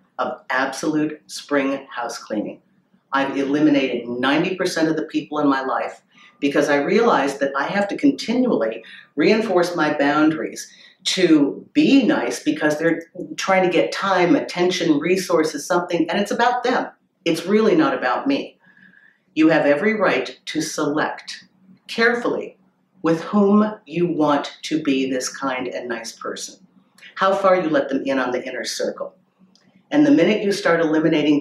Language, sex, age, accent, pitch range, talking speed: English, female, 50-69, American, 140-200 Hz, 155 wpm